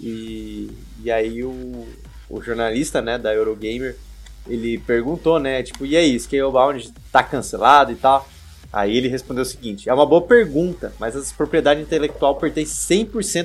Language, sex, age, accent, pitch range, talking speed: Portuguese, male, 20-39, Brazilian, 125-170 Hz, 150 wpm